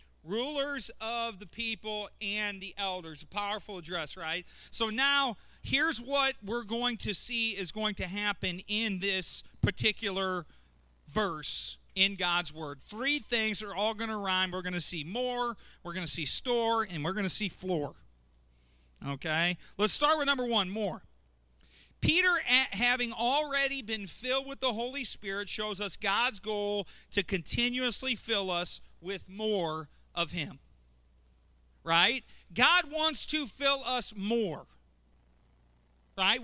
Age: 40-59